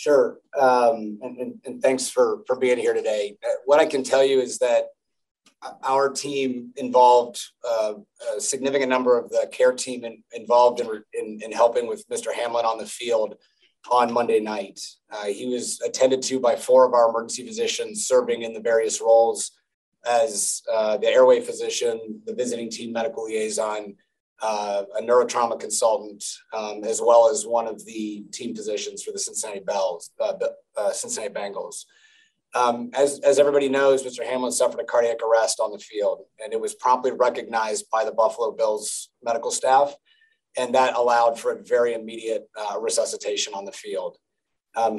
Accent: American